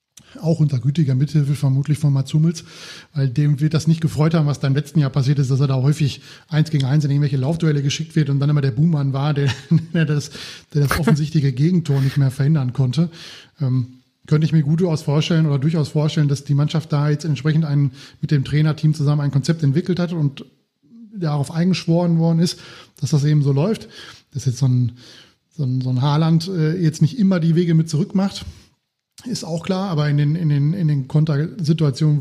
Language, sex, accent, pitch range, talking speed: German, male, German, 140-160 Hz, 215 wpm